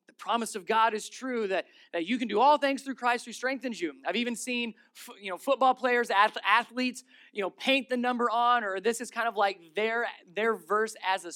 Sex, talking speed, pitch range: male, 225 wpm, 210-265 Hz